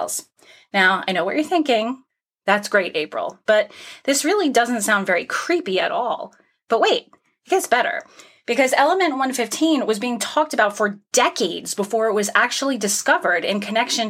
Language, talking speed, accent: English, 165 wpm, American